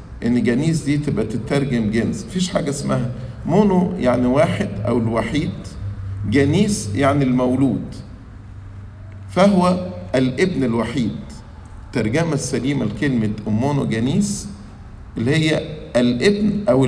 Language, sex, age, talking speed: English, male, 50-69, 105 wpm